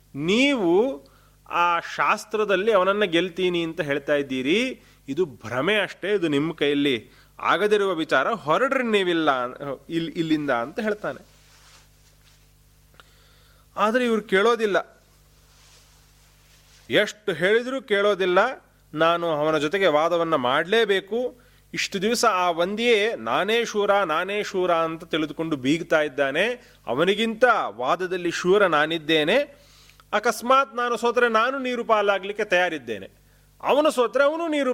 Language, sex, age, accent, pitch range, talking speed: Kannada, male, 30-49, native, 155-230 Hz, 100 wpm